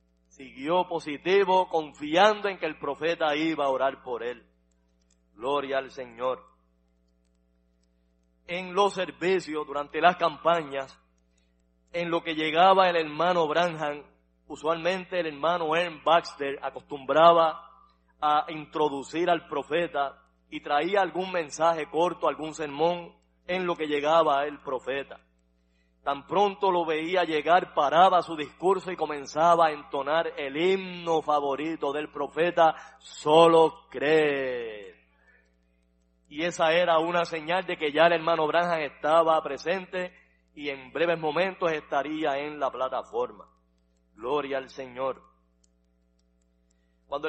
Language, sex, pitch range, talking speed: Spanish, male, 130-170 Hz, 120 wpm